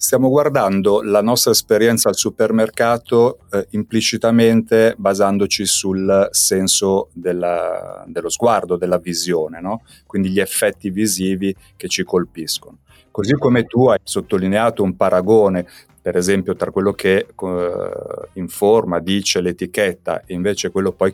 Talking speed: 120 wpm